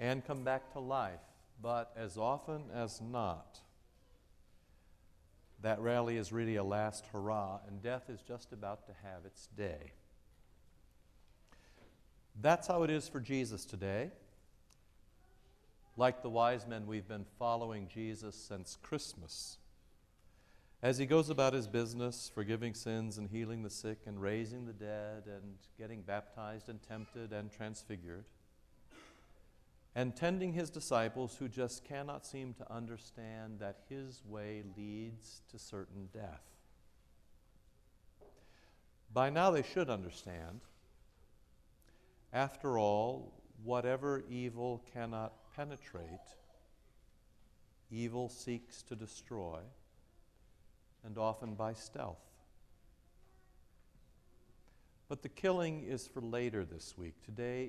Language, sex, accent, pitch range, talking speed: English, male, American, 100-125 Hz, 115 wpm